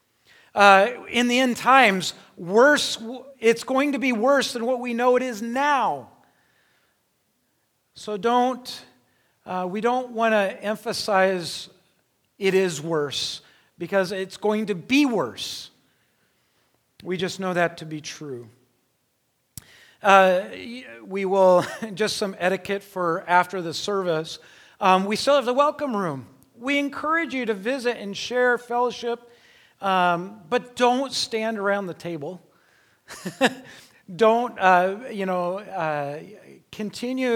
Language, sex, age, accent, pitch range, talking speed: English, male, 40-59, American, 175-225 Hz, 125 wpm